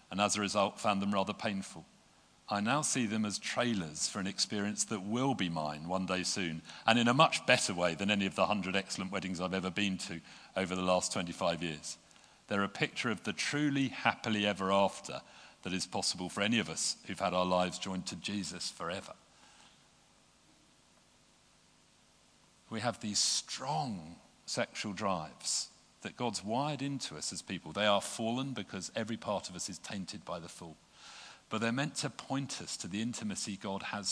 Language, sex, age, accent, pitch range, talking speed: English, male, 50-69, British, 95-115 Hz, 190 wpm